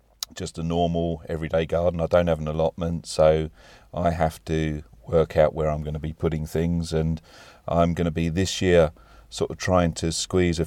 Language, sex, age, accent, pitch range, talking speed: English, male, 40-59, British, 80-90 Hz, 200 wpm